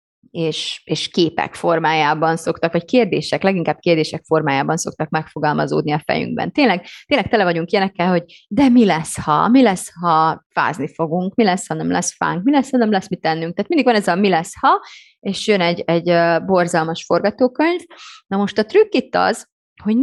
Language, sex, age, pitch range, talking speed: Hungarian, female, 30-49, 170-245 Hz, 190 wpm